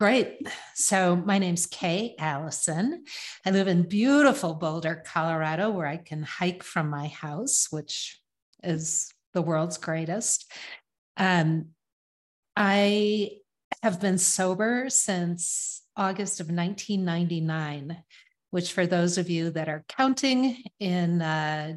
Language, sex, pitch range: English, female, 165-210 Hz